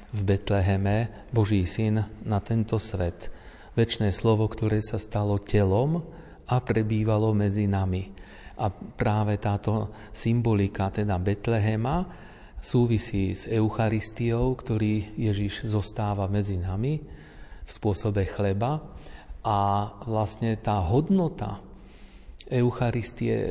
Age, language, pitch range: 40-59, Slovak, 100-115 Hz